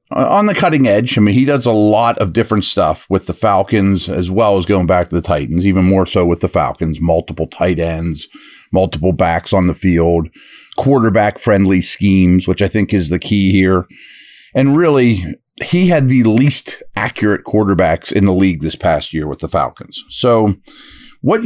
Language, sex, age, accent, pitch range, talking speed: English, male, 40-59, American, 95-125 Hz, 185 wpm